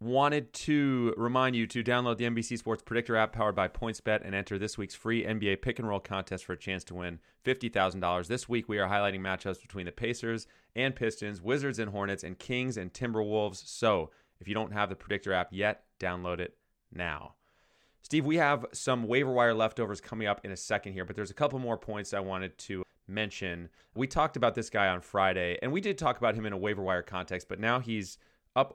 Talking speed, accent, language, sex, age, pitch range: 220 wpm, American, English, male, 30-49, 95-120 Hz